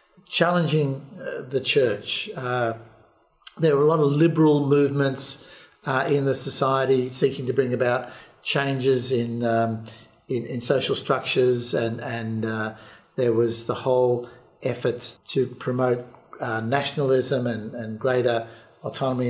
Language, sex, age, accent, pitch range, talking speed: English, male, 50-69, Australian, 125-145 Hz, 130 wpm